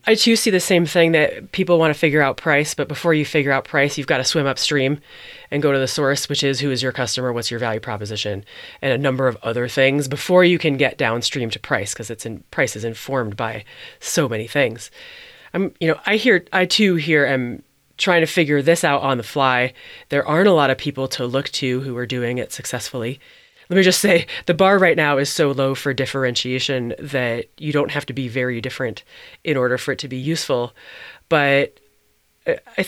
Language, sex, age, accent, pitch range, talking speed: English, female, 30-49, American, 130-170 Hz, 225 wpm